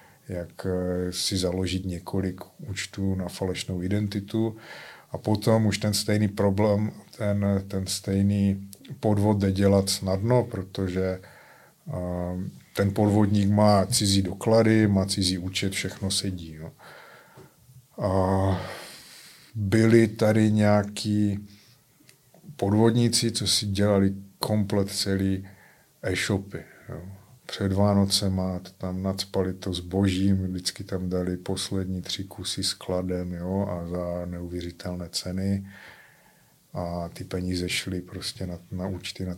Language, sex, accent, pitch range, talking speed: Czech, male, native, 90-105 Hz, 110 wpm